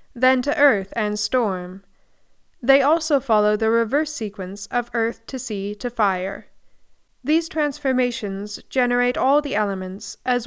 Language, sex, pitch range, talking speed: English, female, 210-270 Hz, 140 wpm